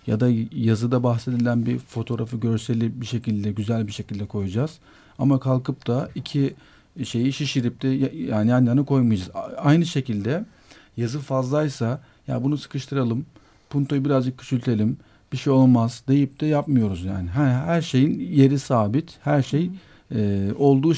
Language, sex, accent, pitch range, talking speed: Turkish, male, native, 115-145 Hz, 135 wpm